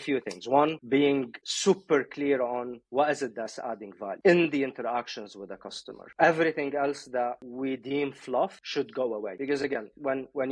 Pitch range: 125-145 Hz